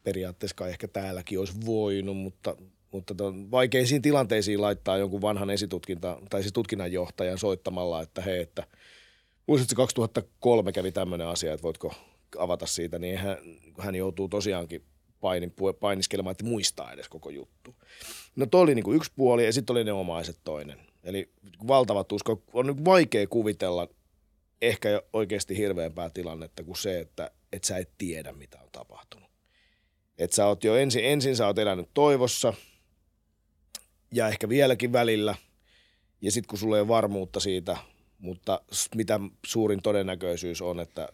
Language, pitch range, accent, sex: Finnish, 90-110 Hz, native, male